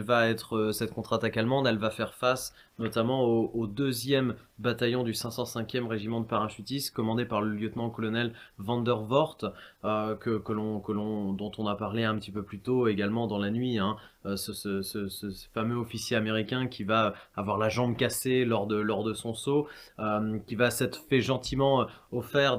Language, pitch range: French, 110-135 Hz